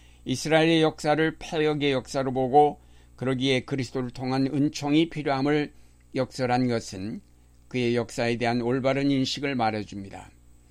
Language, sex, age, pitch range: Korean, male, 60-79, 105-145 Hz